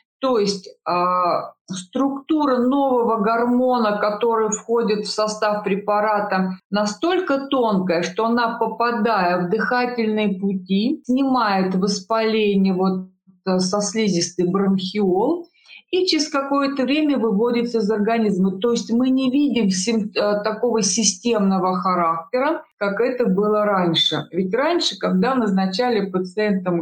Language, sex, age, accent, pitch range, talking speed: Russian, female, 50-69, native, 185-235 Hz, 105 wpm